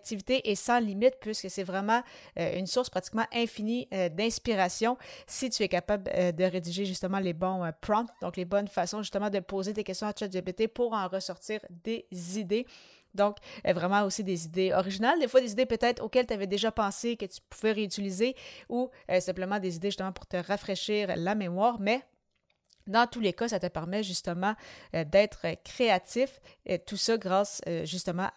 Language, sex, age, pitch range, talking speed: French, female, 30-49, 185-220 Hz, 175 wpm